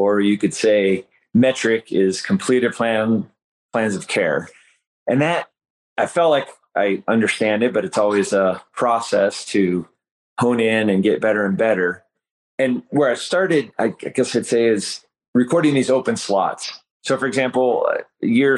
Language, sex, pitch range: English, male, 100-125 Hz